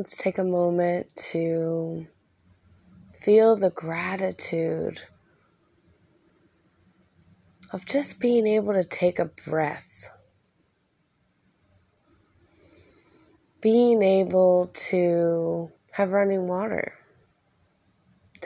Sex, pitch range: female, 165-205 Hz